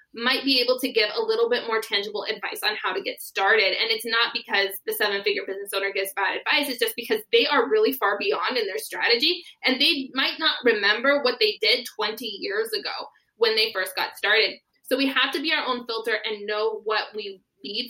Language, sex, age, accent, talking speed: English, female, 20-39, American, 225 wpm